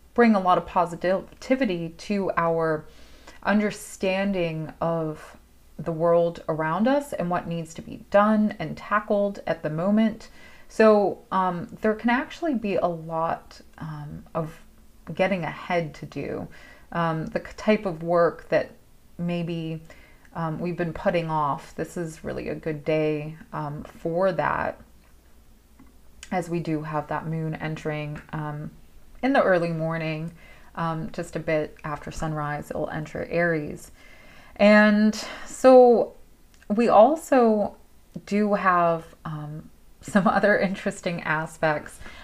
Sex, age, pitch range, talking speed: female, 30-49, 160-205 Hz, 130 wpm